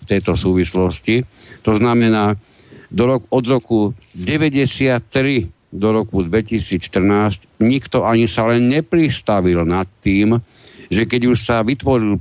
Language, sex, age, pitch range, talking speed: Slovak, male, 60-79, 95-120 Hz, 120 wpm